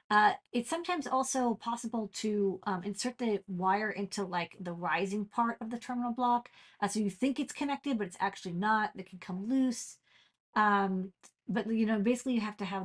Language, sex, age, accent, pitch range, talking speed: English, female, 40-59, American, 185-235 Hz, 195 wpm